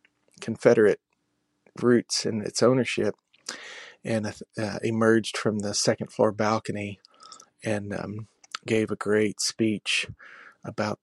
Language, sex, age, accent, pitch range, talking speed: English, male, 40-59, American, 105-120 Hz, 110 wpm